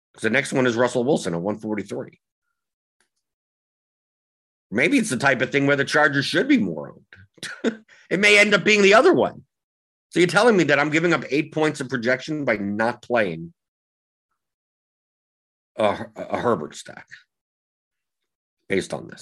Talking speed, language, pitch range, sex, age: 160 wpm, English, 110-155 Hz, male, 50-69